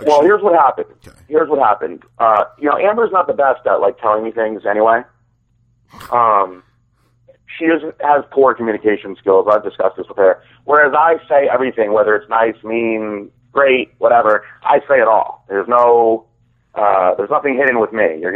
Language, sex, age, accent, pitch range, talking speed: English, male, 30-49, American, 110-130 Hz, 180 wpm